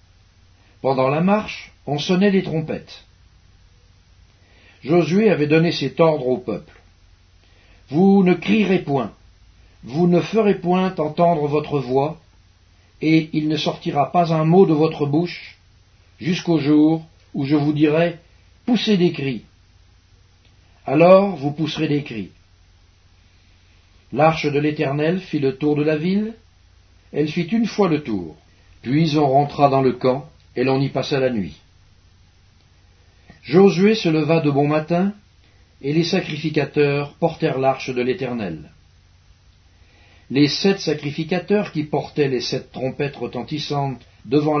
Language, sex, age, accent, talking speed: English, male, 60-79, French, 135 wpm